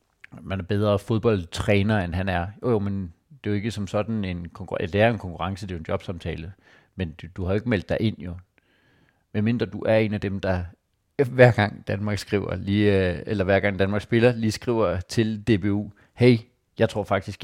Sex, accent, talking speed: male, native, 220 wpm